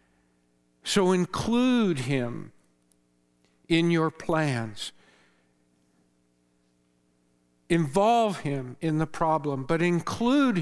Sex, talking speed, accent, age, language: male, 75 wpm, American, 50-69, English